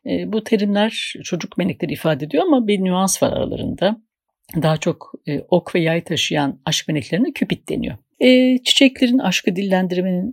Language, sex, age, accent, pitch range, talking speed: Turkish, female, 60-79, native, 145-215 Hz, 145 wpm